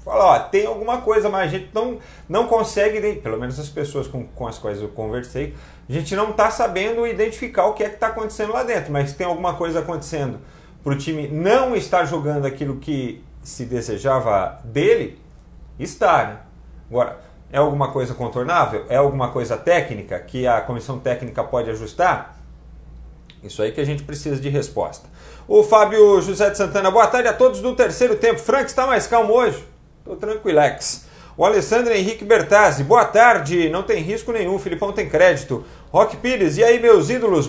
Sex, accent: male, Brazilian